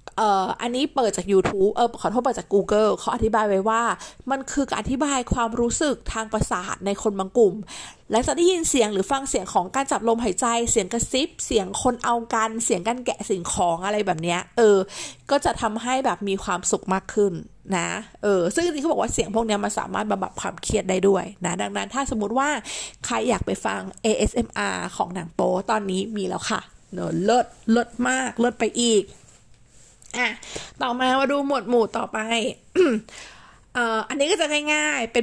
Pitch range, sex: 200-255 Hz, female